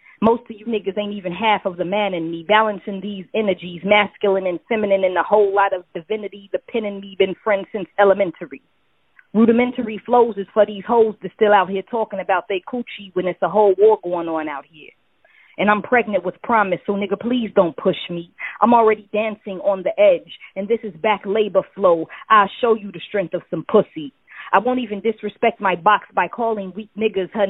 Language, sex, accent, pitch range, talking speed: English, female, American, 190-220 Hz, 210 wpm